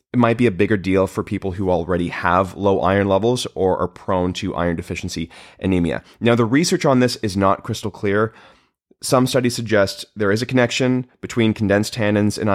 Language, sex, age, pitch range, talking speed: English, male, 30-49, 95-115 Hz, 195 wpm